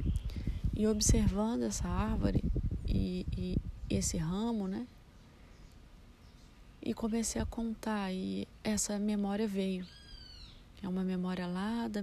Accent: Brazilian